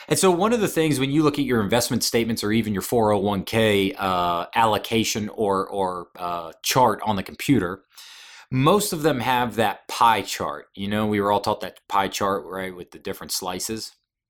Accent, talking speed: American, 195 wpm